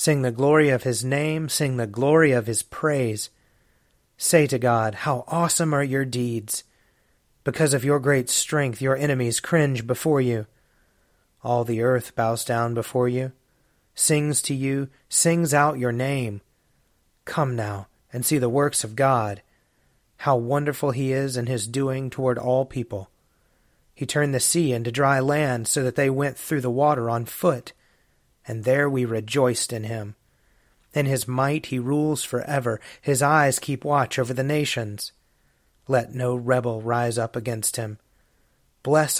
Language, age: English, 30-49